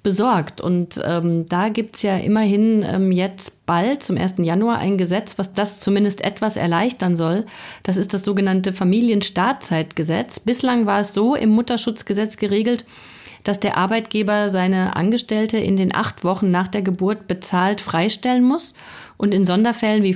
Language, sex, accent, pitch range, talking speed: German, female, German, 185-220 Hz, 160 wpm